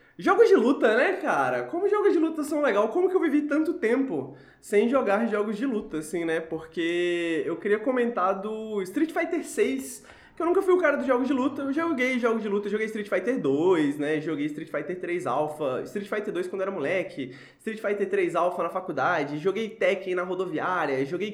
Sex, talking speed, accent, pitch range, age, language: male, 210 wpm, Brazilian, 175-280 Hz, 20-39, Portuguese